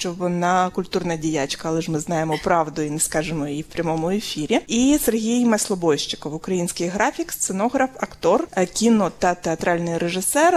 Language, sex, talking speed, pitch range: Ukrainian, female, 155 wpm, 170-220 Hz